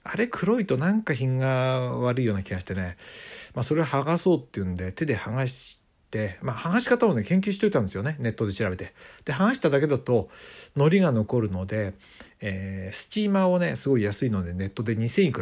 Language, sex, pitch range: Japanese, male, 100-140 Hz